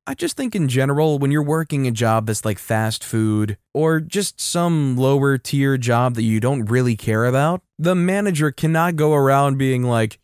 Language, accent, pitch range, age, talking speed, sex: English, American, 115-155 Hz, 20-39, 195 wpm, male